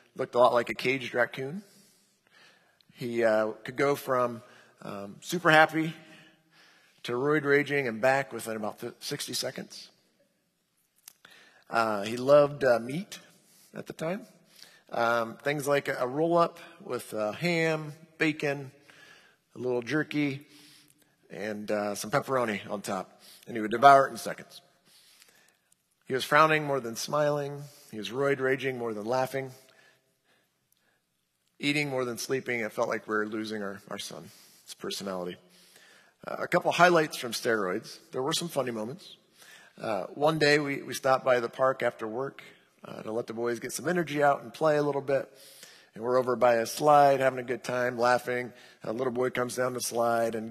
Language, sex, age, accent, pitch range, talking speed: English, male, 50-69, American, 115-150 Hz, 170 wpm